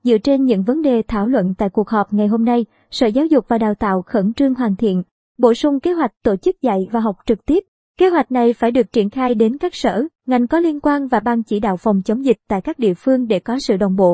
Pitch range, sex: 215-260 Hz, male